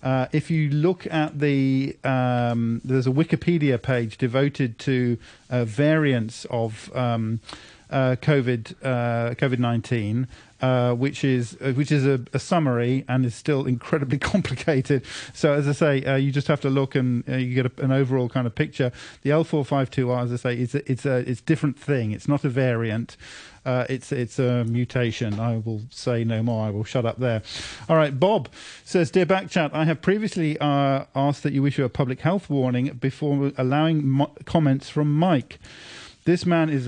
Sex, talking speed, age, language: male, 185 wpm, 40-59, English